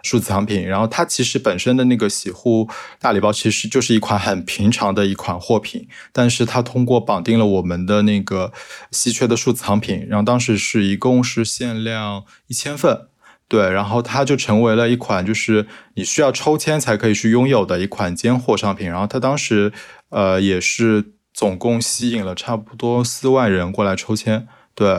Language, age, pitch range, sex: Chinese, 20-39, 100-120 Hz, male